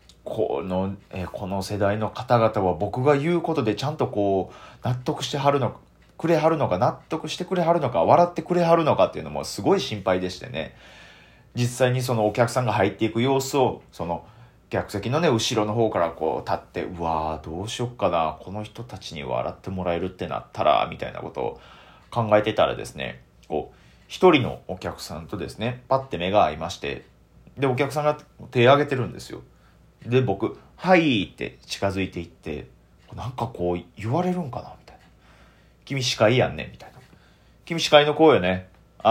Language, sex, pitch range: Japanese, male, 95-140 Hz